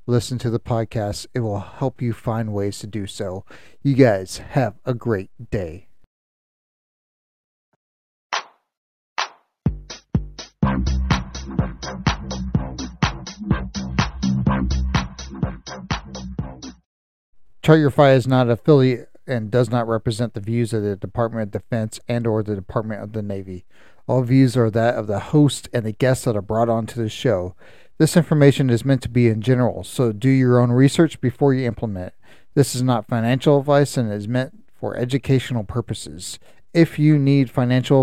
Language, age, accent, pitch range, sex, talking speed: English, 40-59, American, 100-130 Hz, male, 140 wpm